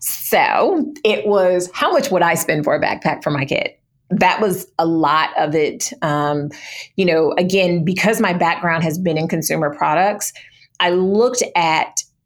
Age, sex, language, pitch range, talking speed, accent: 30-49, female, English, 160-190 Hz, 170 wpm, American